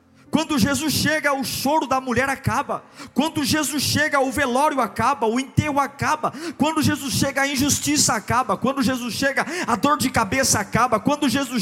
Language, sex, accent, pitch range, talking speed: Portuguese, male, Brazilian, 245-280 Hz, 170 wpm